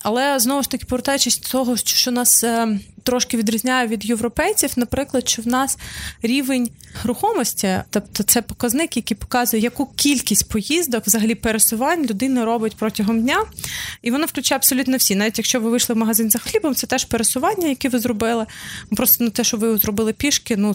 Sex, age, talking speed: female, 20-39, 175 wpm